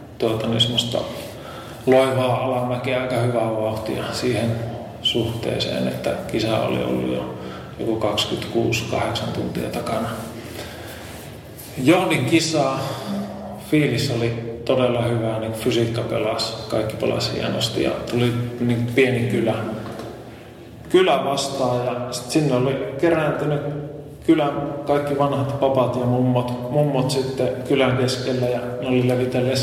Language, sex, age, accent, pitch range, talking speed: Finnish, male, 30-49, native, 115-130 Hz, 110 wpm